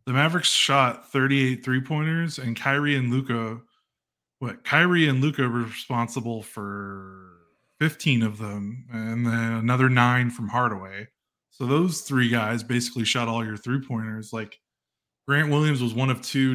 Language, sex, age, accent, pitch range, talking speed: English, male, 20-39, American, 115-135 Hz, 155 wpm